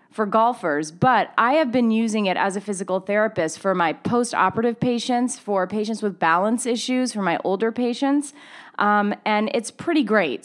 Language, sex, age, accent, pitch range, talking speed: English, female, 30-49, American, 195-255 Hz, 170 wpm